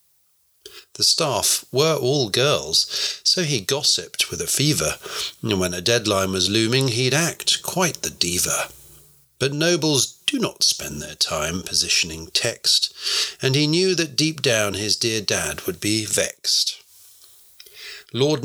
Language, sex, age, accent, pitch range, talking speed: English, male, 50-69, British, 100-140 Hz, 145 wpm